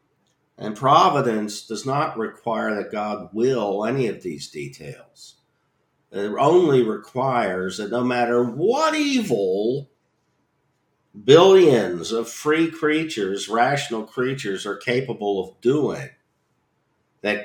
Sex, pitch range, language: male, 100-125 Hz, English